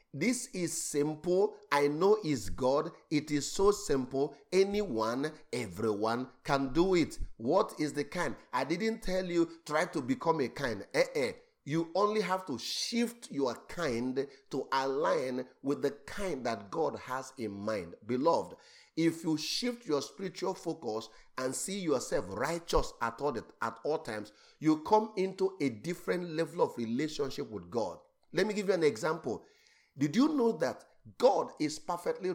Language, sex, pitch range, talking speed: English, male, 130-190 Hz, 160 wpm